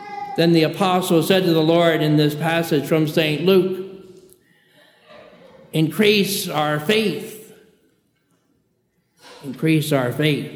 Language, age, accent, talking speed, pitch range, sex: English, 60-79, American, 110 wpm, 150-185 Hz, male